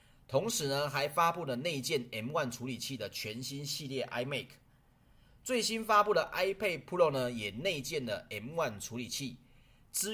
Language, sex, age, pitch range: Chinese, male, 30-49, 115-150 Hz